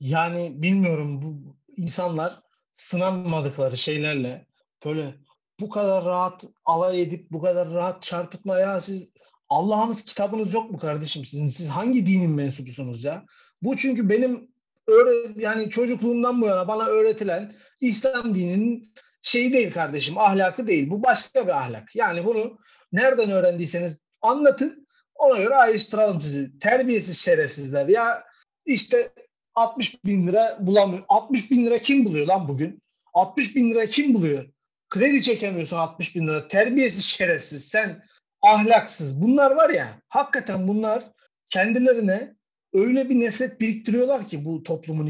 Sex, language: male, Turkish